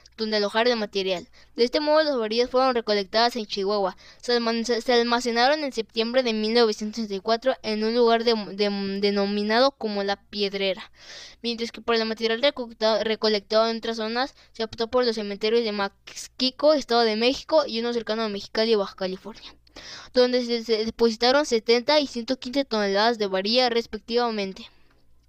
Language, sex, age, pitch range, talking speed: Spanish, female, 10-29, 210-245 Hz, 150 wpm